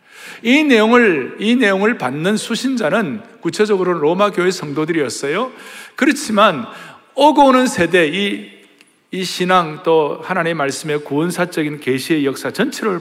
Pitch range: 170-240 Hz